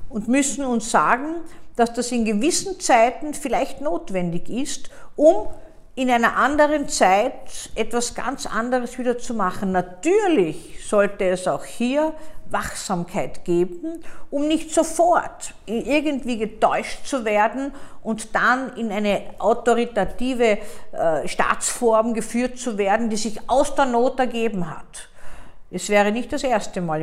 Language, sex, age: German, female, 50-69